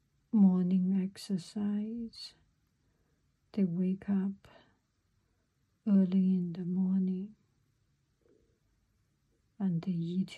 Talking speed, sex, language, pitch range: 70 wpm, female, English, 190-225 Hz